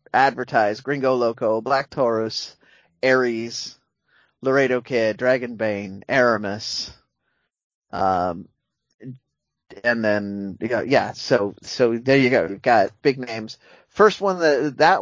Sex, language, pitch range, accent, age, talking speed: male, English, 110-130 Hz, American, 30-49, 115 wpm